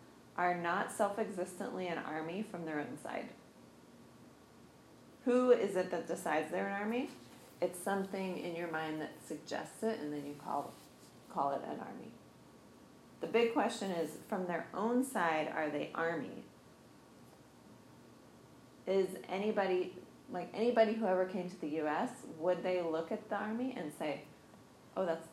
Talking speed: 150 wpm